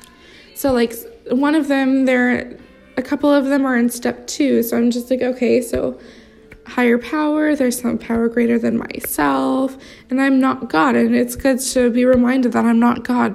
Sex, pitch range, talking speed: female, 225-270 Hz, 190 wpm